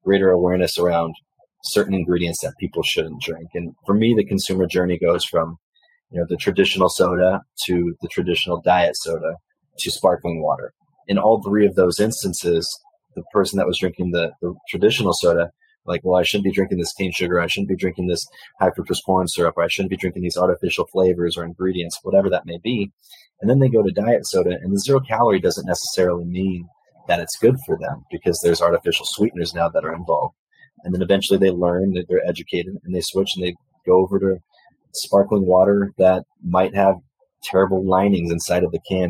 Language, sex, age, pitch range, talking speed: English, male, 30-49, 90-100 Hz, 200 wpm